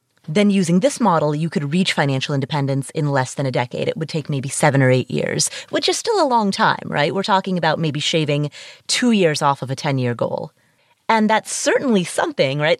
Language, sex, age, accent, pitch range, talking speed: English, female, 30-49, American, 150-210 Hz, 215 wpm